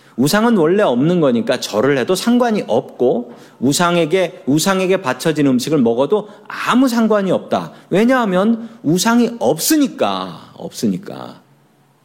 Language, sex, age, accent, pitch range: Korean, male, 40-59, native, 135-230 Hz